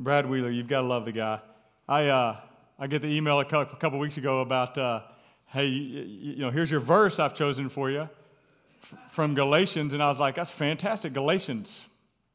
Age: 40-59